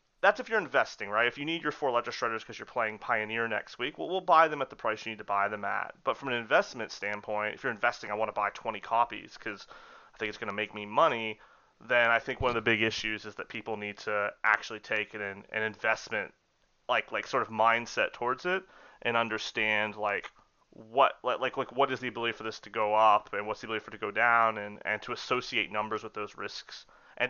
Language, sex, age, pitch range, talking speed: English, male, 30-49, 105-120 Hz, 245 wpm